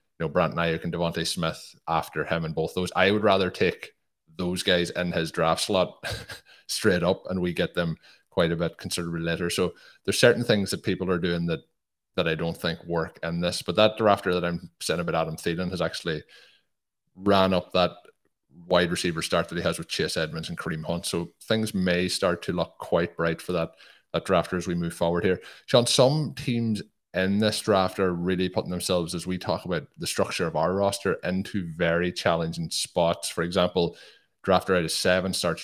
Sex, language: male, English